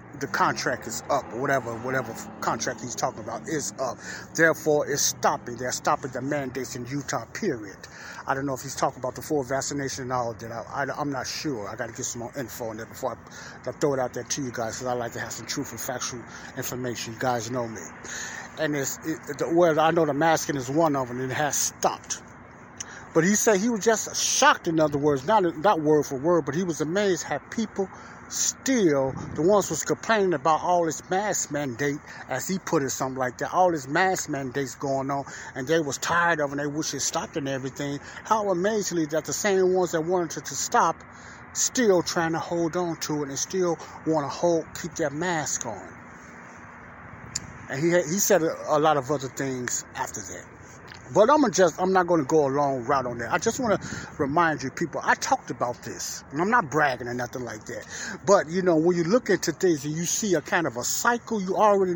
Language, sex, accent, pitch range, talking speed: English, male, American, 130-175 Hz, 230 wpm